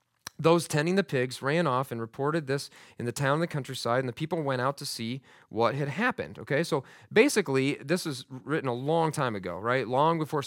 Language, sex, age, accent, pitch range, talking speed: English, male, 30-49, American, 130-180 Hz, 220 wpm